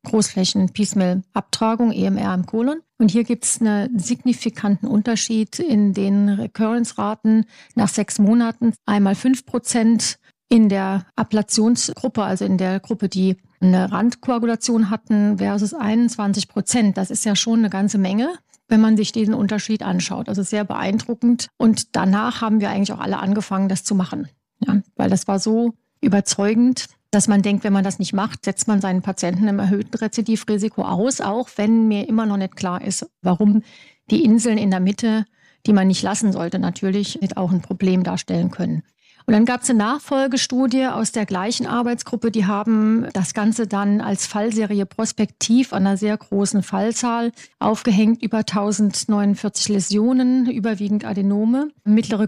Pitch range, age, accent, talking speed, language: 200-230 Hz, 40-59, German, 160 wpm, German